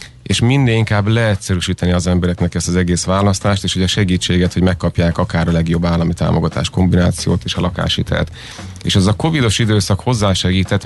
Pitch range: 90-105 Hz